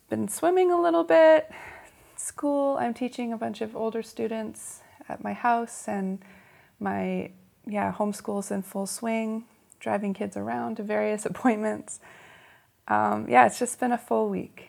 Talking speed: 150 wpm